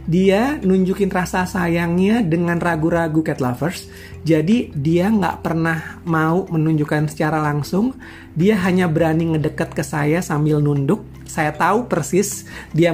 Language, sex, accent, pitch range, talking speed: Indonesian, male, native, 145-180 Hz, 130 wpm